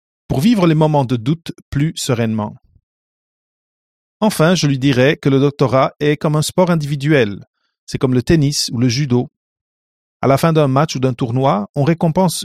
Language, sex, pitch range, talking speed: English, male, 120-160 Hz, 180 wpm